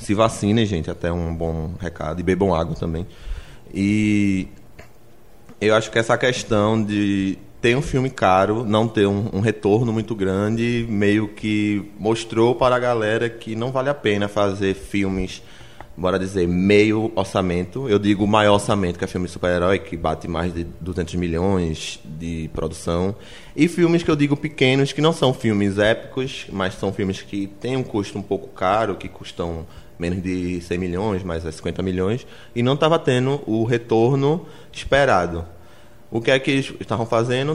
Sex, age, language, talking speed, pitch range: male, 20-39, Portuguese, 170 wpm, 95-120 Hz